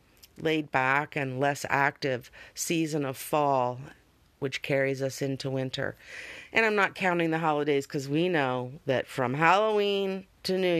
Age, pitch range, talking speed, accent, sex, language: 50-69, 135-165 Hz, 150 wpm, American, female, English